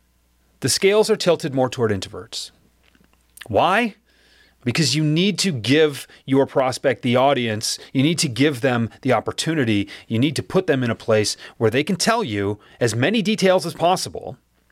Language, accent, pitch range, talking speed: English, American, 115-180 Hz, 170 wpm